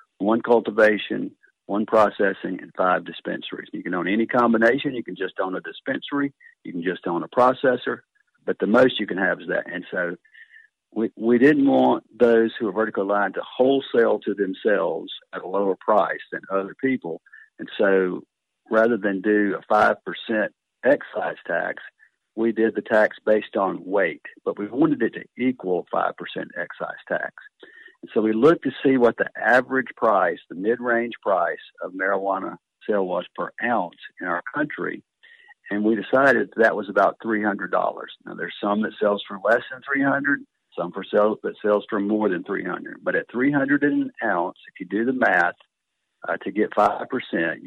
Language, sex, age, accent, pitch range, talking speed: English, male, 50-69, American, 105-140 Hz, 170 wpm